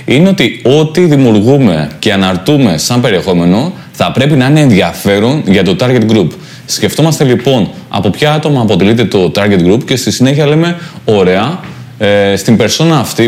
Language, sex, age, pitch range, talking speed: Greek, male, 20-39, 110-140 Hz, 160 wpm